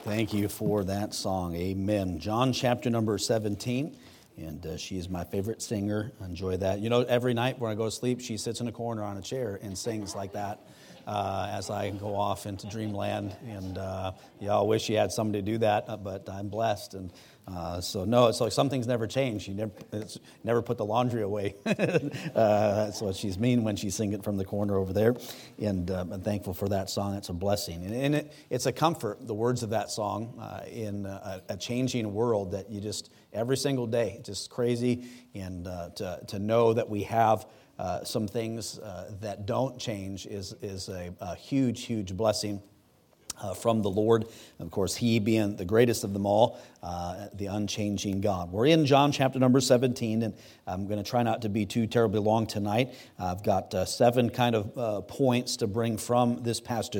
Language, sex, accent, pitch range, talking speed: English, male, American, 100-120 Hz, 205 wpm